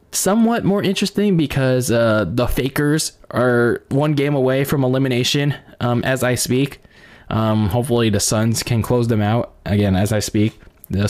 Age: 20-39